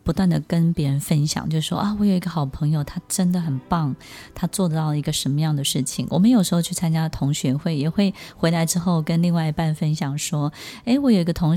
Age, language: 20-39, Chinese